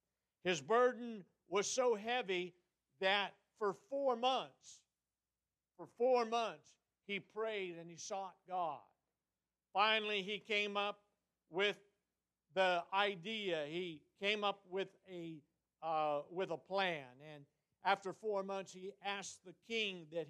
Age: 50-69